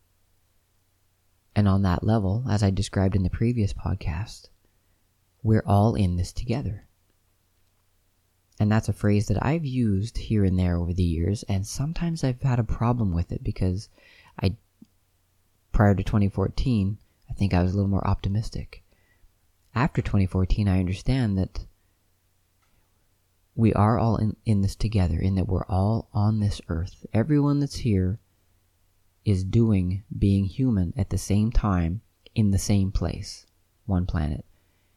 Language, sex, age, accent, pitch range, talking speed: English, male, 30-49, American, 95-110 Hz, 150 wpm